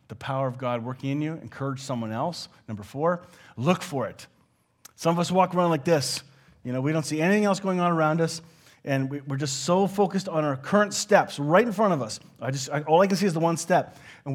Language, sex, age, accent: English, male, 30-49, American